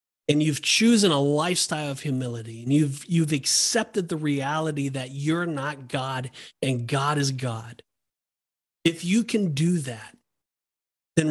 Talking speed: 145 wpm